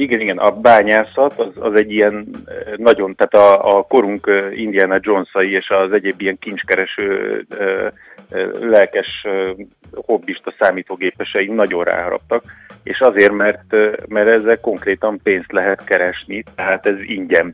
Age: 30-49